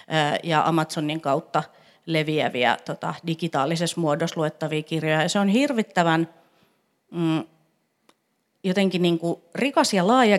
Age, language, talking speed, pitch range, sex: 30-49, Finnish, 110 wpm, 155-190 Hz, female